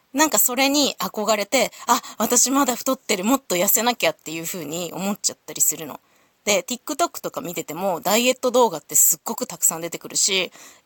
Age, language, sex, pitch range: 20-39, Japanese, female, 165-255 Hz